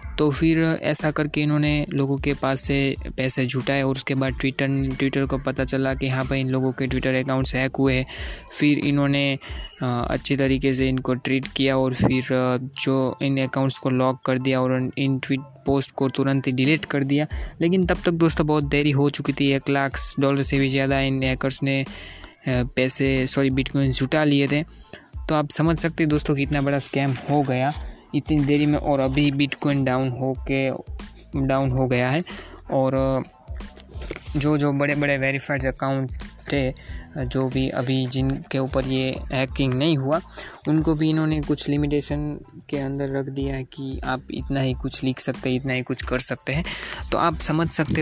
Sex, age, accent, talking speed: male, 20-39, native, 185 wpm